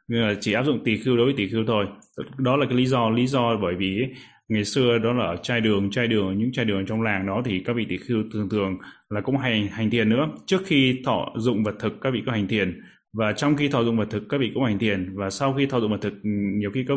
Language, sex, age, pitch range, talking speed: Vietnamese, male, 20-39, 105-130 Hz, 290 wpm